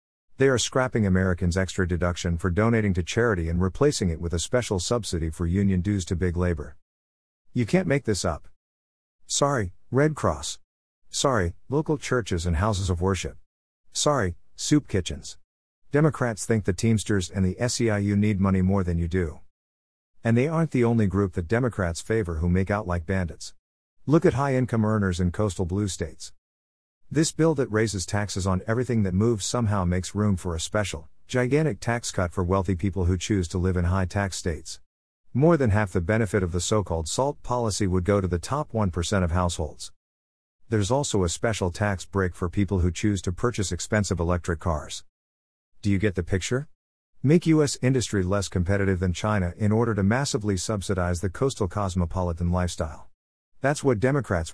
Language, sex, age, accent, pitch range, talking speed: English, male, 50-69, American, 85-110 Hz, 175 wpm